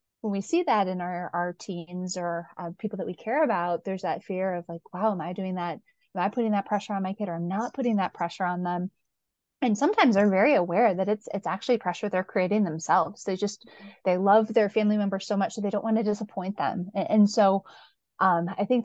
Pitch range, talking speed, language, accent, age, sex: 180-220 Hz, 250 wpm, English, American, 20-39, female